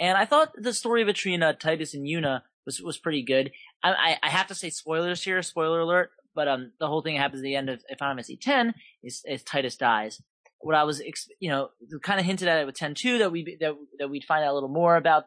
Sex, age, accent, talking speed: male, 20-39, American, 240 wpm